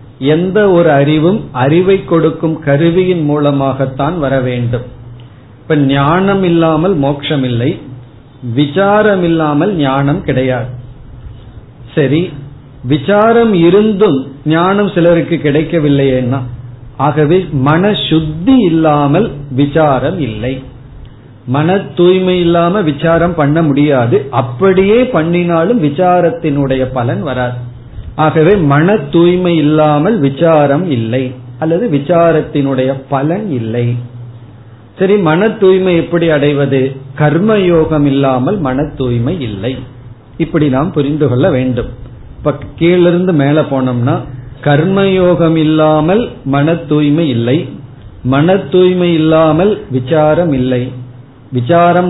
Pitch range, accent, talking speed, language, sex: 130-170 Hz, native, 85 wpm, Tamil, male